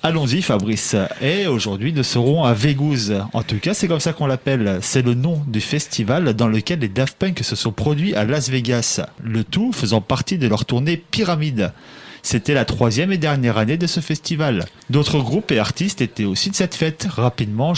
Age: 30-49